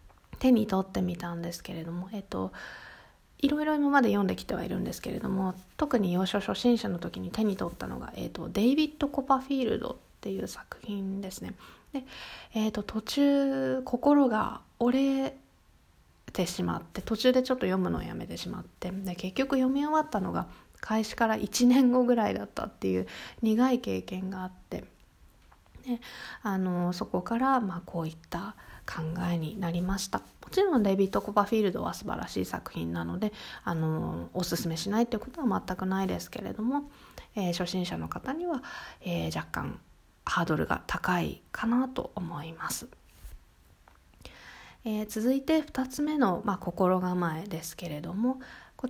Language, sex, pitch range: Japanese, female, 175-255 Hz